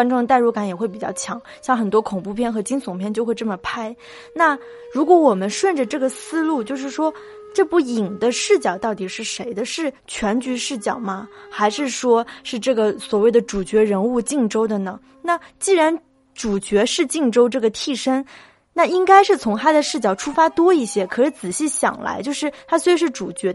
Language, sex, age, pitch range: Chinese, female, 20-39, 220-310 Hz